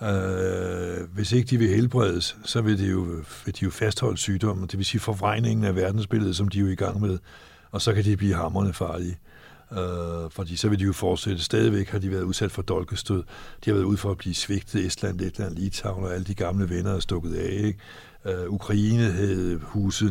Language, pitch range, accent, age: Danish, 90-110 Hz, native, 60-79